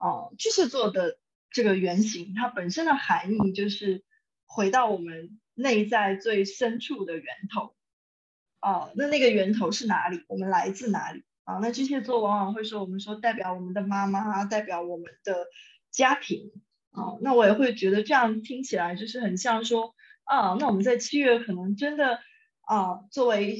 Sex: female